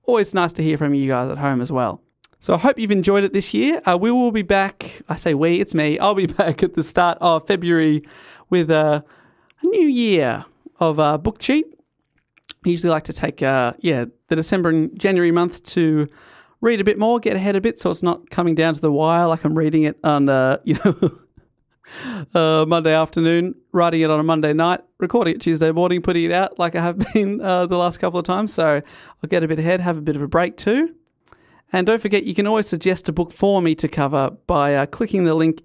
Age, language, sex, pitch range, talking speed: 30-49, English, male, 155-205 Hz, 235 wpm